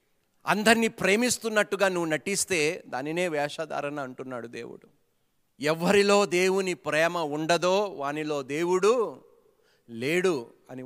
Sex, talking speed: male, 90 wpm